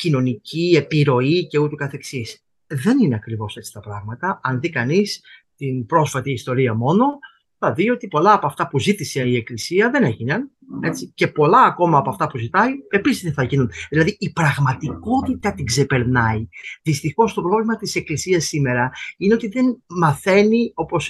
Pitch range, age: 135-210 Hz, 30-49